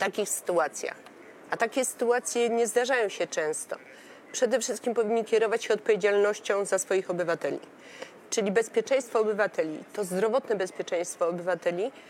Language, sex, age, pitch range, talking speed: Polish, female, 30-49, 200-250 Hz, 130 wpm